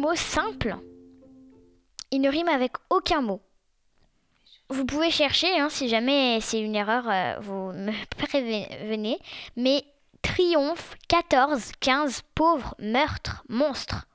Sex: female